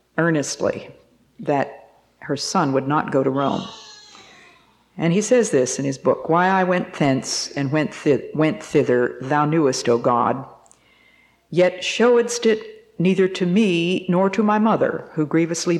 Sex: female